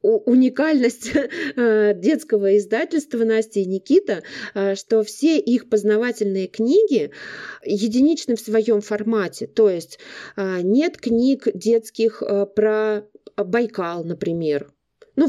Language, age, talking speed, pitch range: Russian, 30-49, 95 wpm, 210-275 Hz